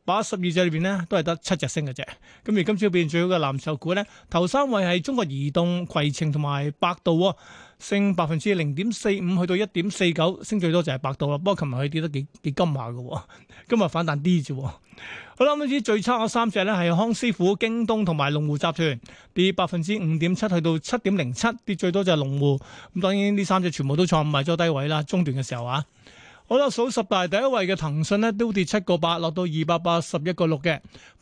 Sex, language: male, Chinese